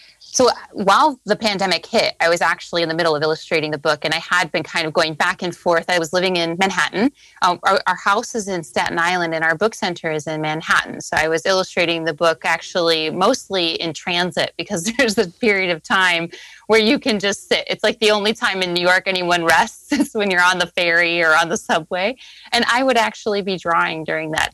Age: 20-39